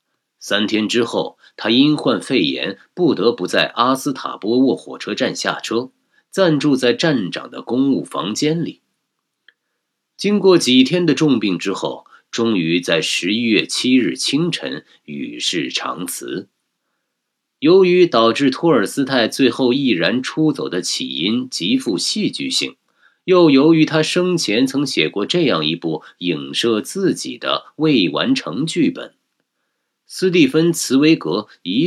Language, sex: Chinese, male